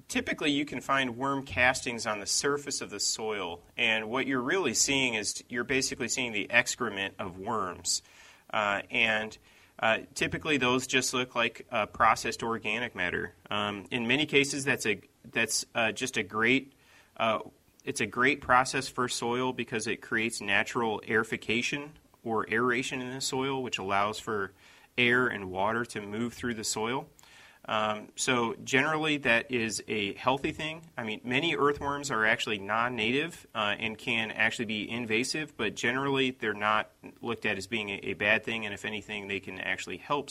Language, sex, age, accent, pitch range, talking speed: English, male, 30-49, American, 110-135 Hz, 170 wpm